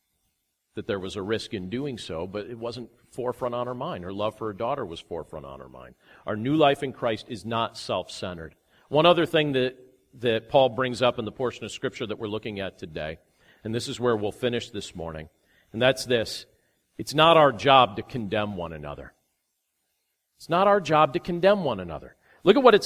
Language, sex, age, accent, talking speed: English, male, 40-59, American, 215 wpm